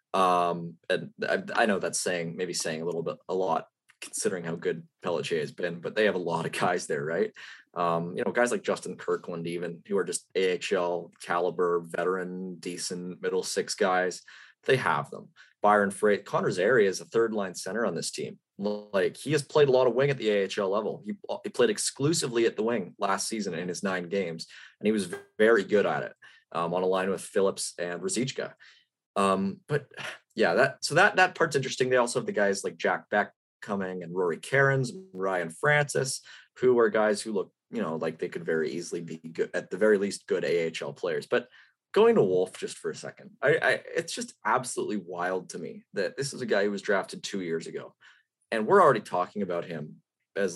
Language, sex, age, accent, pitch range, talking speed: English, male, 20-39, American, 90-130 Hz, 215 wpm